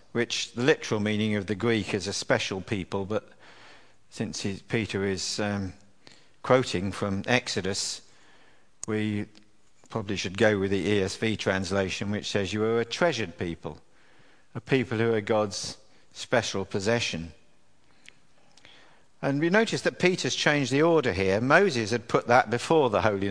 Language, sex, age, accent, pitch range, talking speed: English, male, 50-69, British, 100-130 Hz, 145 wpm